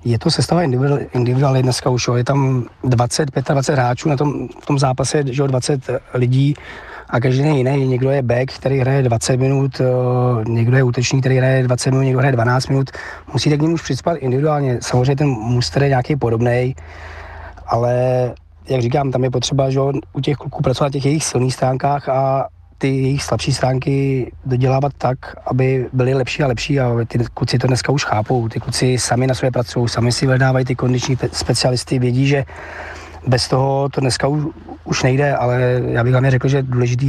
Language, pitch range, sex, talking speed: Czech, 120-135 Hz, male, 190 wpm